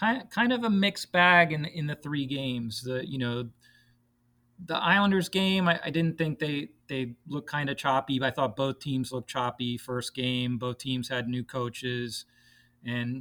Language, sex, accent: English, male, American